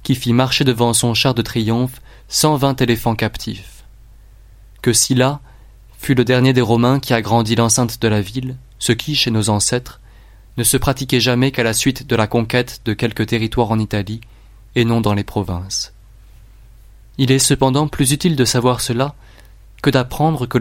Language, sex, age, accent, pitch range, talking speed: French, male, 20-39, French, 105-125 Hz, 180 wpm